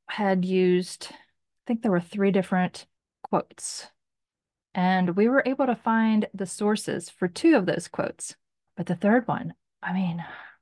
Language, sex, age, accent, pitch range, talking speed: English, female, 30-49, American, 185-240 Hz, 160 wpm